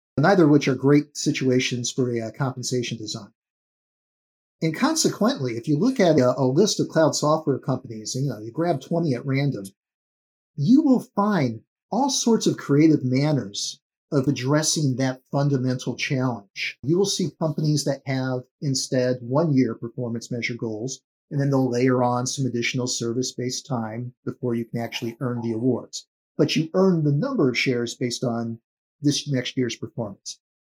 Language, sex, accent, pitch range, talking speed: English, male, American, 120-155 Hz, 165 wpm